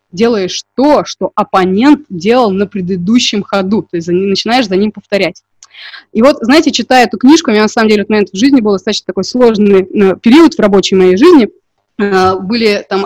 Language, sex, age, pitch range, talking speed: Russian, female, 20-39, 195-240 Hz, 185 wpm